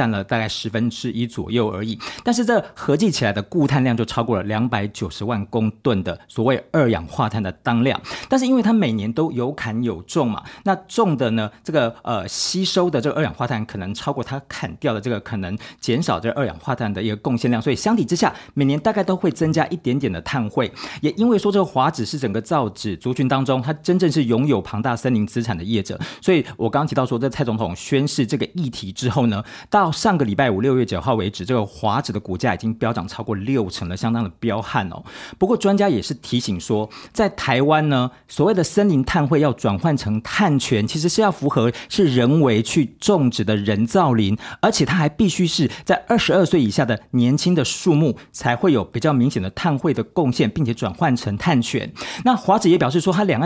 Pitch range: 110-155 Hz